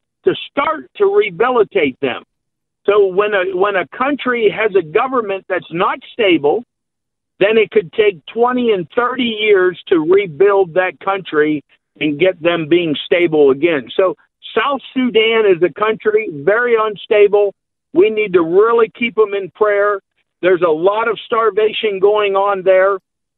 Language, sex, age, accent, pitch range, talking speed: English, male, 50-69, American, 195-255 Hz, 150 wpm